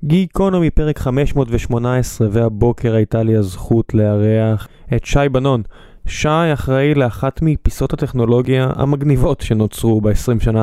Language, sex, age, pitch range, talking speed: Hebrew, male, 20-39, 110-140 Hz, 115 wpm